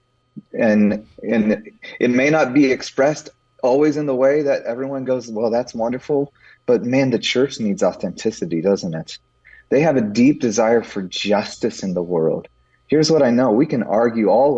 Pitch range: 110-145 Hz